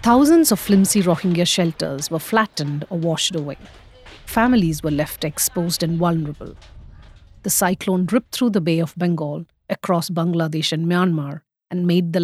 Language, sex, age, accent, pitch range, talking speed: English, female, 50-69, Indian, 160-200 Hz, 150 wpm